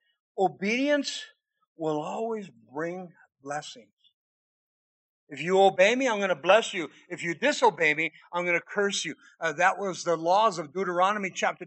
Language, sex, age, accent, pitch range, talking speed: English, male, 50-69, American, 165-220 Hz, 160 wpm